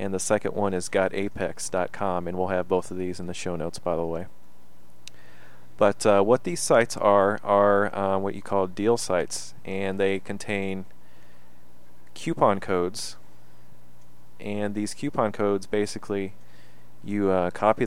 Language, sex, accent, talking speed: English, male, American, 150 wpm